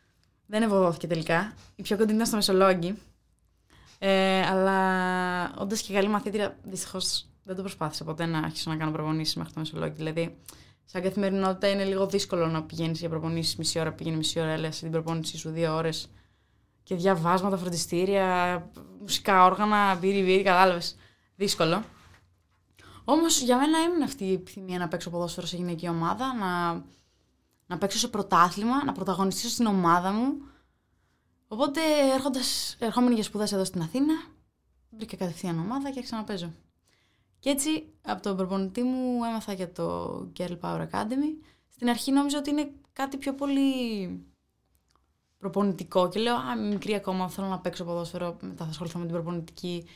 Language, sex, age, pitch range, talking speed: Greek, female, 20-39, 165-220 Hz, 155 wpm